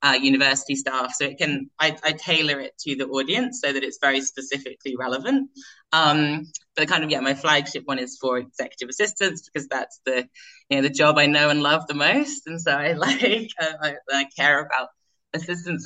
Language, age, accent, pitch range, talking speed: English, 20-39, British, 135-155 Hz, 205 wpm